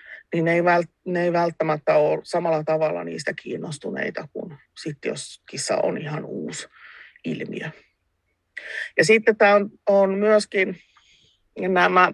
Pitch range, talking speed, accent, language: 165-205 Hz, 125 wpm, native, Finnish